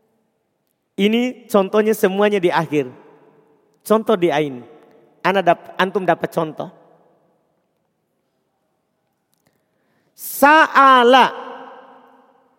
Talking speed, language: 65 wpm, Indonesian